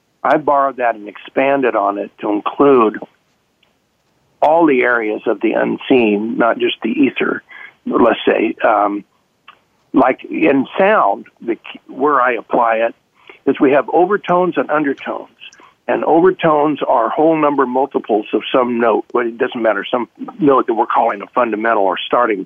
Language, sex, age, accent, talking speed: English, male, 50-69, American, 160 wpm